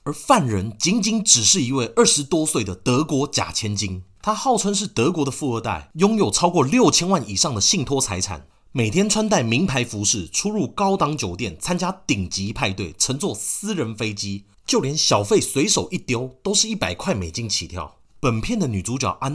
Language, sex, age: Chinese, male, 30-49